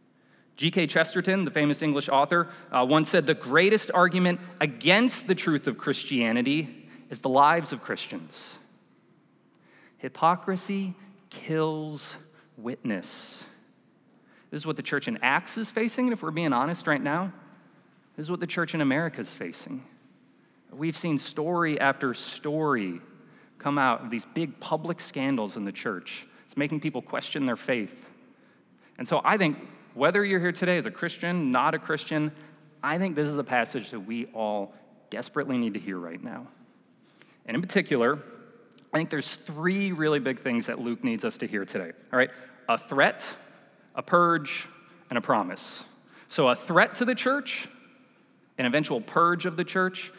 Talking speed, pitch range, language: 165 wpm, 145-185 Hz, English